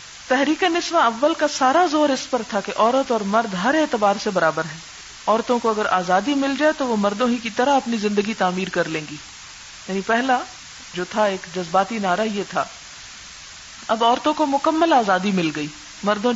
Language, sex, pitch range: Urdu, female, 195-260 Hz